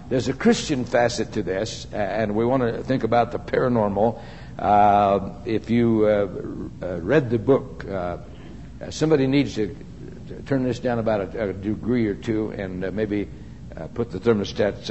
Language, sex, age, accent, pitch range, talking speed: English, male, 60-79, American, 100-125 Hz, 175 wpm